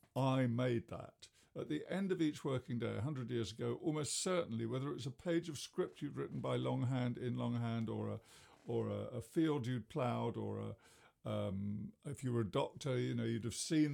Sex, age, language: male, 50-69, English